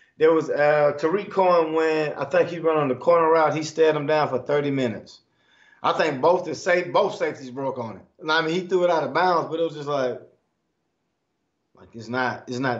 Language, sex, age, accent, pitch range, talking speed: English, male, 20-39, American, 145-205 Hz, 235 wpm